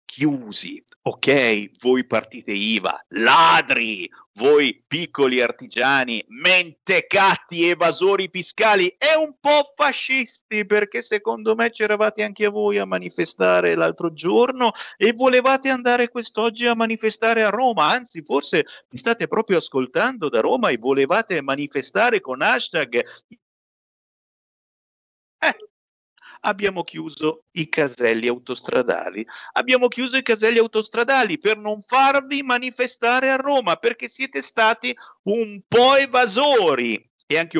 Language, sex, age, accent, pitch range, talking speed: Italian, male, 50-69, native, 155-250 Hz, 115 wpm